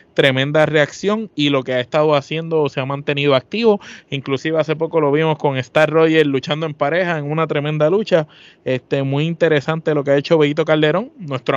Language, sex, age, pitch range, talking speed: Spanish, male, 20-39, 135-160 Hz, 190 wpm